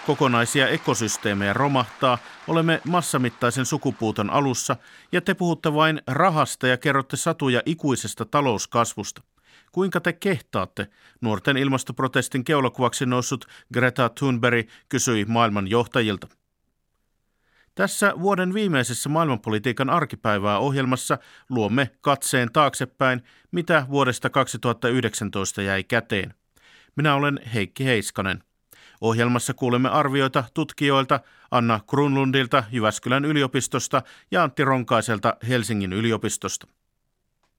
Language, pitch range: Finnish, 110-140 Hz